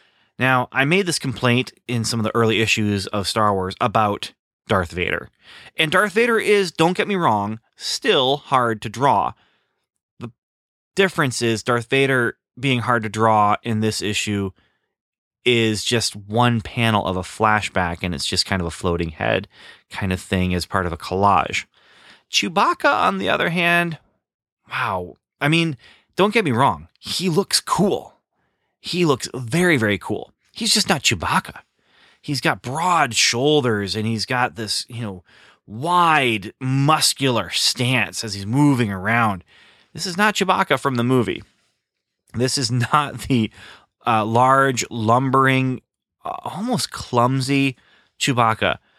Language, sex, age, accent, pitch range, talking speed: English, male, 30-49, American, 105-135 Hz, 150 wpm